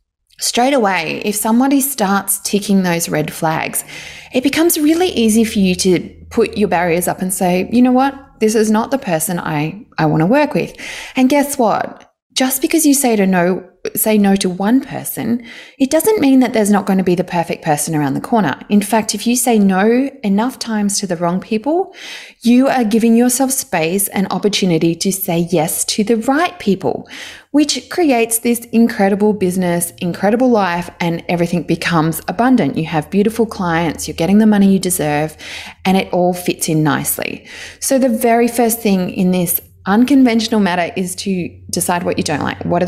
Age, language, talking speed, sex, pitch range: 20-39, English, 190 wpm, female, 175-240 Hz